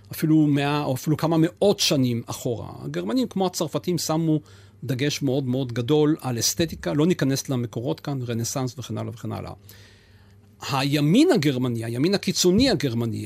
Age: 40-59